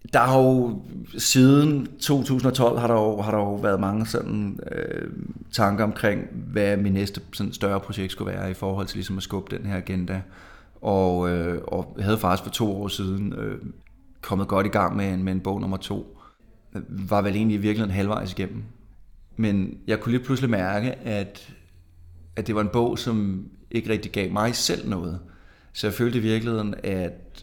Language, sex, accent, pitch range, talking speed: Danish, male, native, 95-110 Hz, 195 wpm